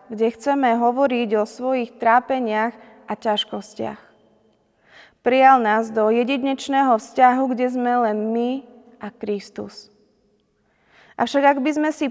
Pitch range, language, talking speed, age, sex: 225-255 Hz, Slovak, 120 wpm, 20-39, female